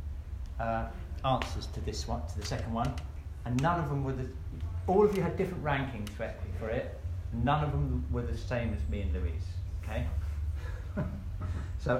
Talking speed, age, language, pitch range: 180 wpm, 50-69, English, 85-115 Hz